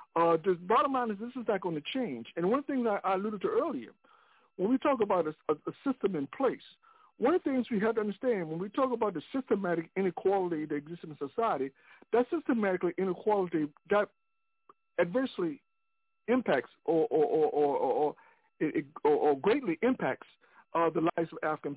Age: 60-79